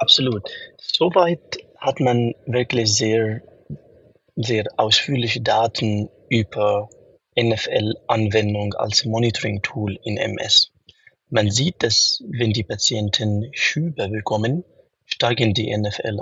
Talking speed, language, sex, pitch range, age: 95 wpm, German, male, 105-120 Hz, 30-49